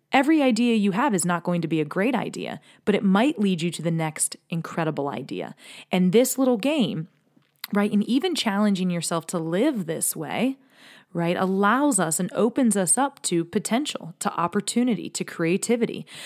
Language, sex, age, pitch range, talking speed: English, female, 20-39, 165-200 Hz, 175 wpm